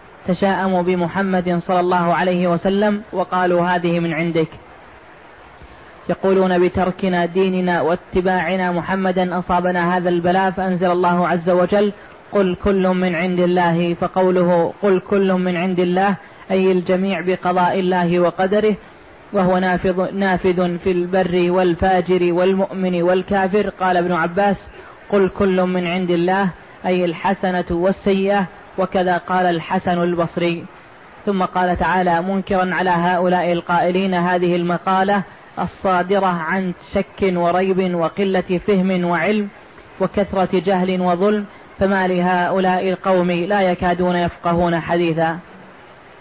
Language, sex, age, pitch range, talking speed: Arabic, female, 20-39, 175-190 Hz, 110 wpm